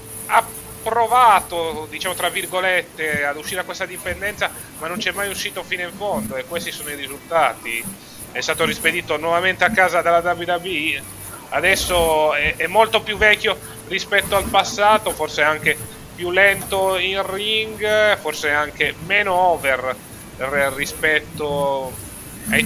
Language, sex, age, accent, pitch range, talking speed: Italian, male, 30-49, native, 145-185 Hz, 140 wpm